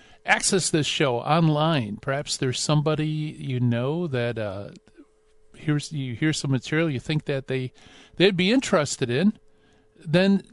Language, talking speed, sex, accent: English, 140 wpm, male, American